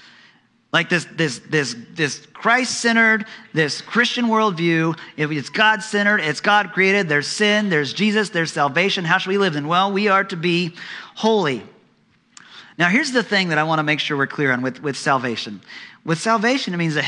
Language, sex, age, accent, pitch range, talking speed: English, male, 40-59, American, 150-205 Hz, 190 wpm